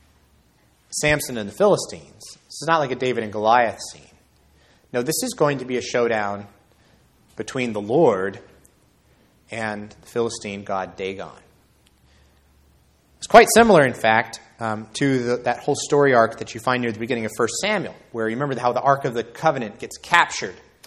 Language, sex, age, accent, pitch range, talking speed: English, male, 30-49, American, 110-140 Hz, 175 wpm